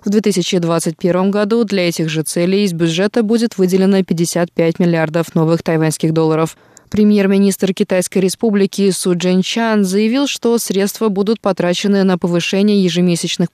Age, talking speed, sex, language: 20-39, 135 wpm, female, Russian